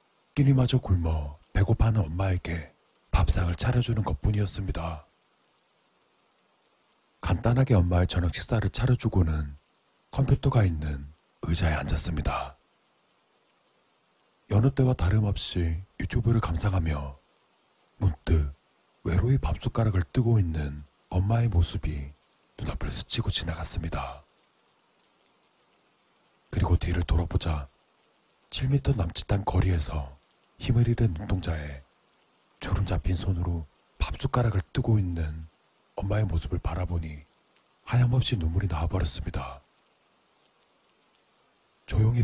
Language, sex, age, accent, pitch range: Korean, male, 40-59, native, 80-110 Hz